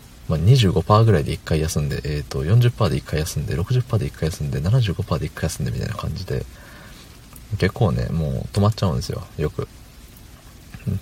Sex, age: male, 40-59